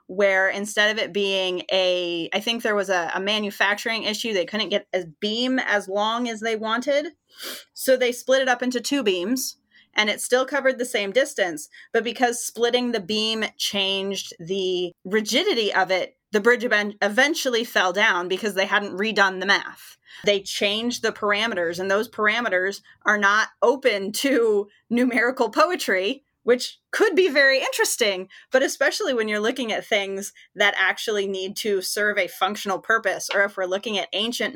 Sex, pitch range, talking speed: female, 195-245 Hz, 175 wpm